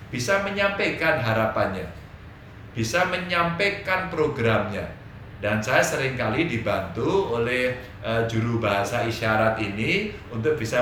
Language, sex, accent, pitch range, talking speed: Indonesian, male, native, 110-185 Hz, 100 wpm